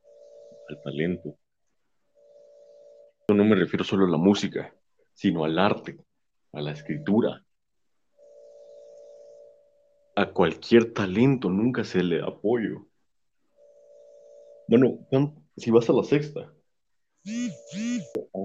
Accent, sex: Mexican, male